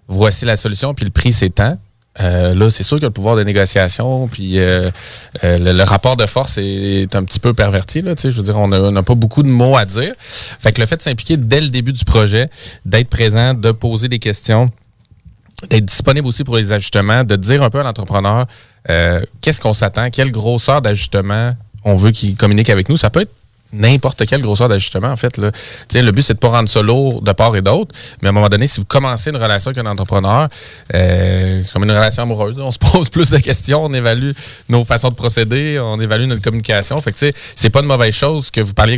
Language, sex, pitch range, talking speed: French, male, 100-125 Hz, 235 wpm